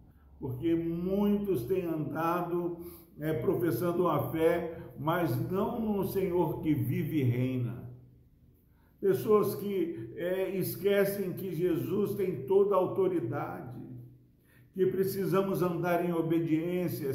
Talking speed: 100 wpm